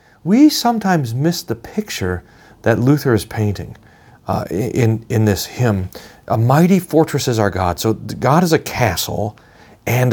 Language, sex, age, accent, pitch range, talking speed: English, male, 40-59, American, 100-125 Hz, 155 wpm